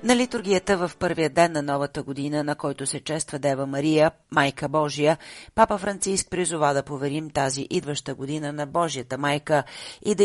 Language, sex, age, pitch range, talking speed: Bulgarian, female, 40-59, 140-165 Hz, 170 wpm